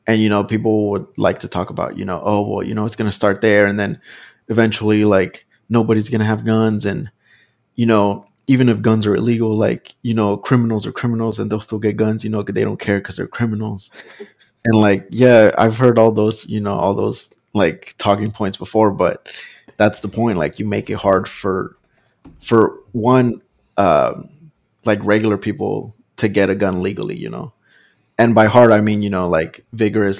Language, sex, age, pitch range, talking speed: English, male, 20-39, 100-110 Hz, 205 wpm